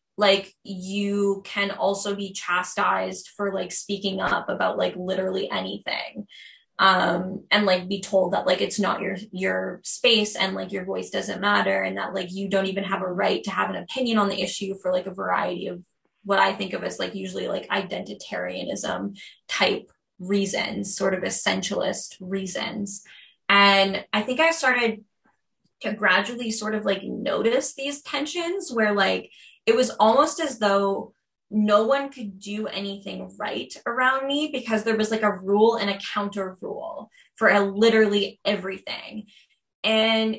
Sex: female